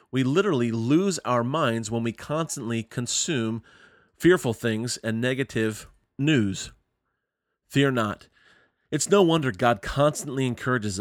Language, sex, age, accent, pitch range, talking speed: English, male, 30-49, American, 110-135 Hz, 120 wpm